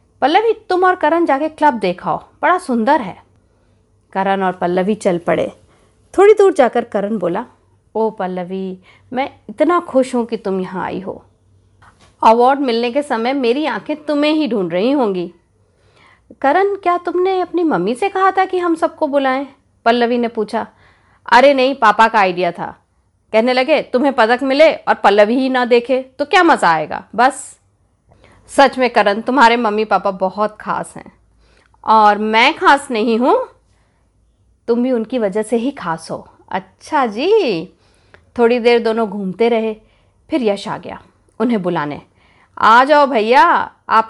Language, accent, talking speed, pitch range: Hindi, native, 160 wpm, 185-275 Hz